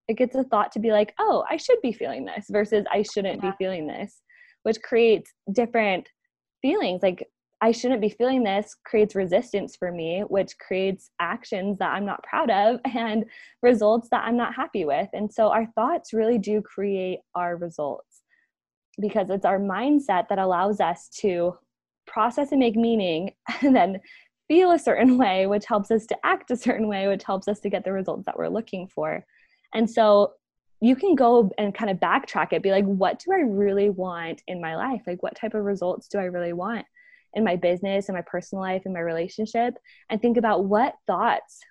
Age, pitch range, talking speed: 20-39, 195-235 Hz, 200 wpm